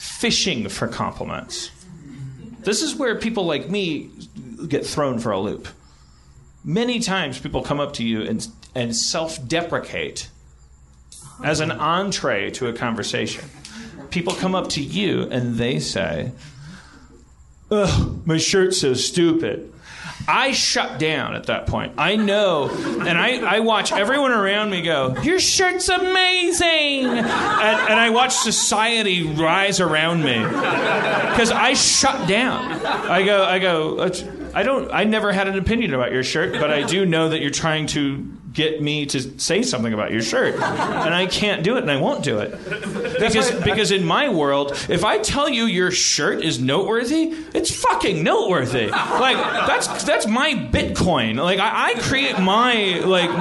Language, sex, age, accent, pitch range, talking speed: English, male, 40-59, American, 150-230 Hz, 160 wpm